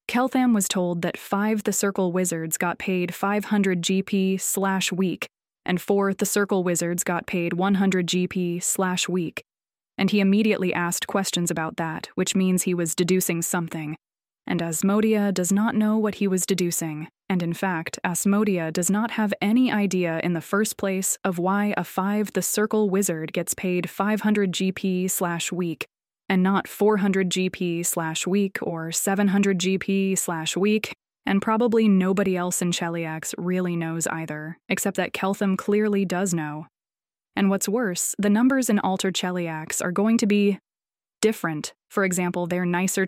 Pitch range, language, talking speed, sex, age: 175-200 Hz, English, 160 wpm, female, 20-39